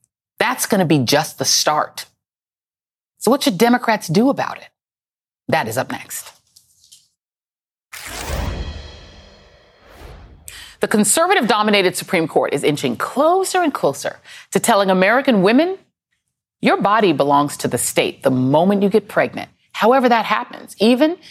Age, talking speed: 30-49, 130 wpm